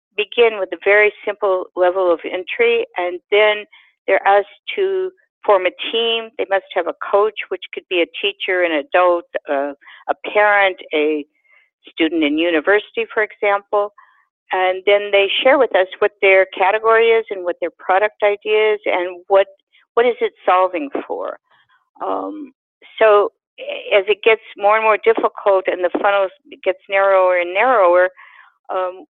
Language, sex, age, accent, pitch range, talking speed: English, female, 50-69, American, 180-265 Hz, 160 wpm